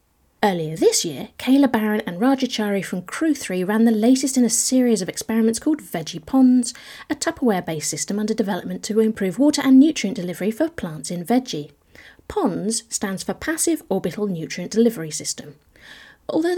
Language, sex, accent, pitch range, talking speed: English, female, British, 185-270 Hz, 165 wpm